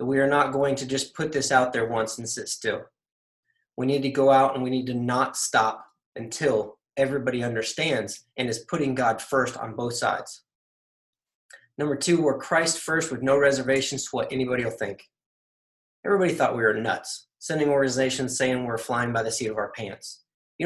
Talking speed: 190 wpm